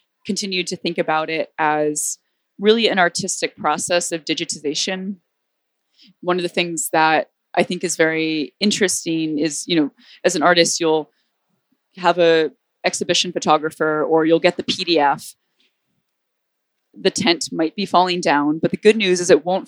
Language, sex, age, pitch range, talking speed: English, female, 20-39, 160-195 Hz, 155 wpm